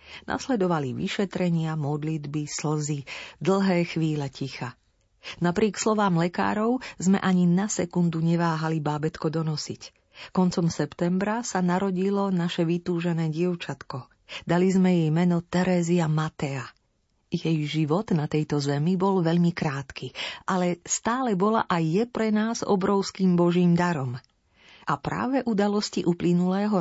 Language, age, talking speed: Slovak, 40-59, 115 wpm